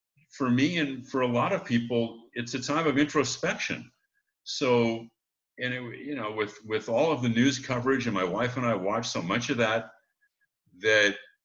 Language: English